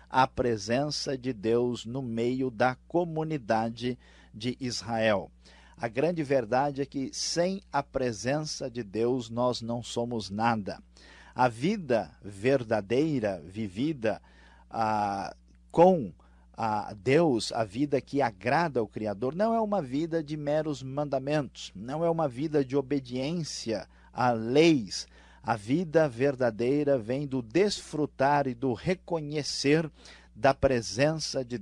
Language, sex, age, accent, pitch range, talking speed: Portuguese, male, 50-69, Brazilian, 115-150 Hz, 125 wpm